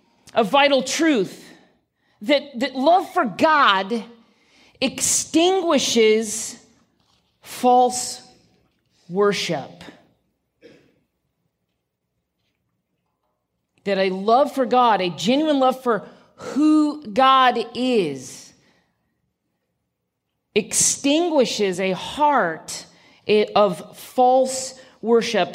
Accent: American